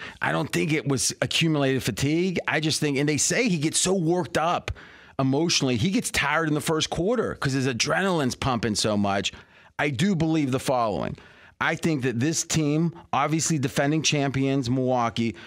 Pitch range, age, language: 125-155 Hz, 30-49, English